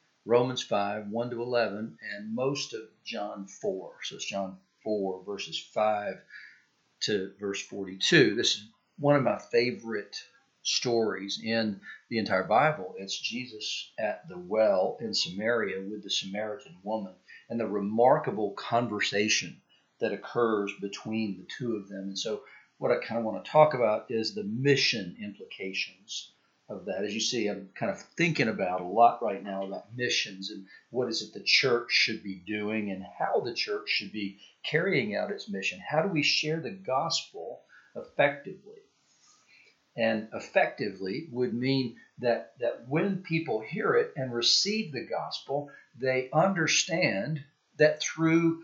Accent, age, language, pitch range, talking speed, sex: American, 50-69, English, 105-145 Hz, 155 wpm, male